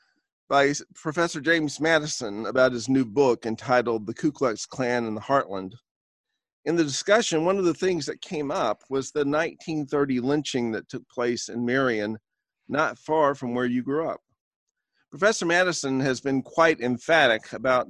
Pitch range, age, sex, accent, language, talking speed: 115-145 Hz, 50-69, male, American, English, 165 wpm